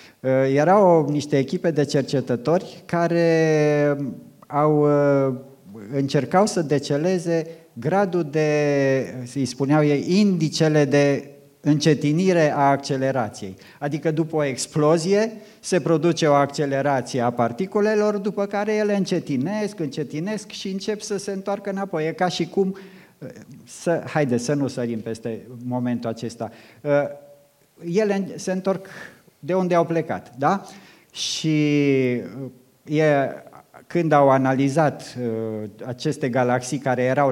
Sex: male